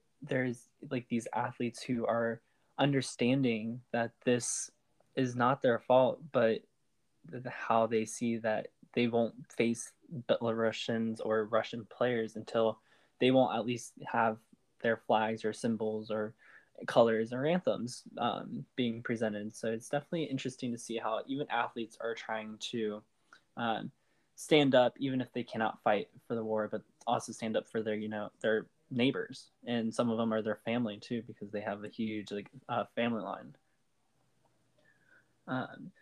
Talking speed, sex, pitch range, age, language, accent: 155 wpm, male, 110-125 Hz, 10-29, English, American